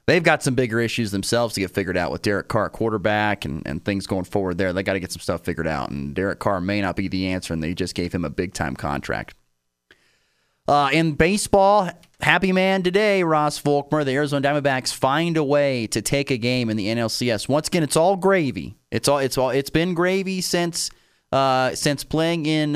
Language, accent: English, American